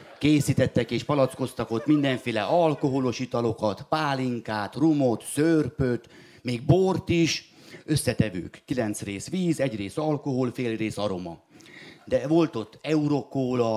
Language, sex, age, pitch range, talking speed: Hungarian, male, 30-49, 110-150 Hz, 120 wpm